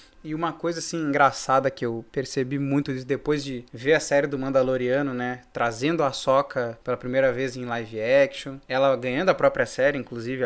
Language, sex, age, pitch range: Portuguese, male, 20-39, 135-160 Hz